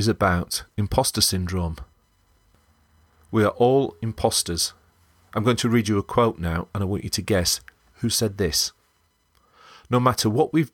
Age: 40-59